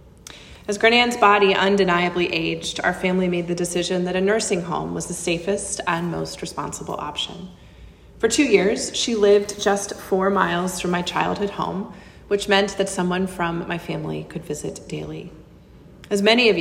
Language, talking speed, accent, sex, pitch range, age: English, 165 wpm, American, female, 175-205 Hz, 30-49